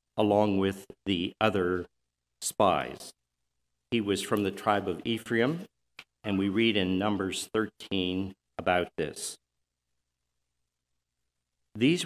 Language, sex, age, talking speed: English, male, 50-69, 105 wpm